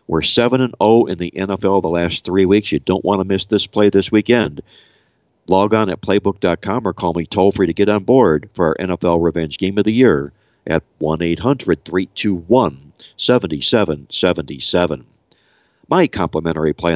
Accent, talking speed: American, 150 wpm